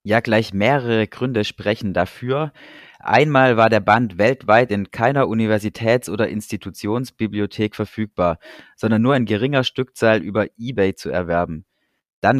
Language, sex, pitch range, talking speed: German, male, 100-120 Hz, 130 wpm